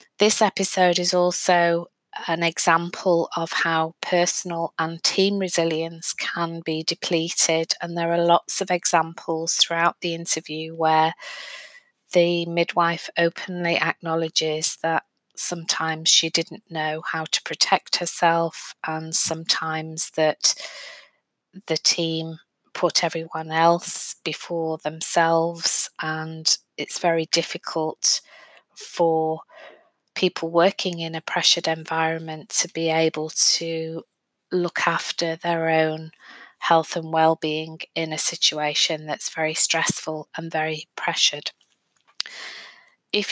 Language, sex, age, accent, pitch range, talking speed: English, female, 20-39, British, 160-175 Hz, 110 wpm